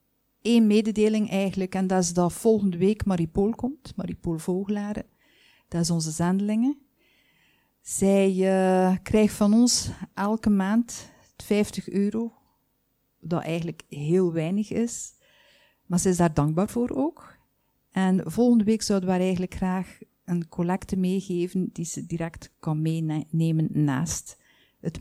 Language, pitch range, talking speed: Dutch, 180-230 Hz, 130 wpm